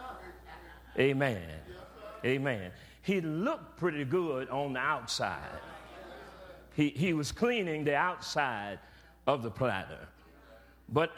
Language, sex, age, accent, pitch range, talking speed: English, male, 50-69, American, 130-180 Hz, 100 wpm